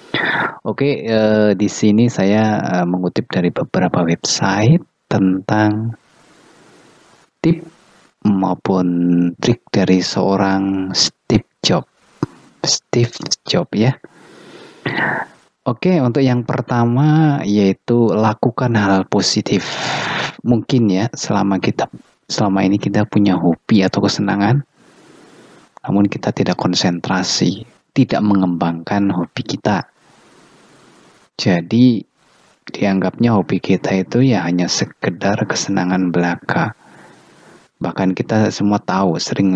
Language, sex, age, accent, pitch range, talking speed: Indonesian, male, 30-49, native, 95-115 Hz, 95 wpm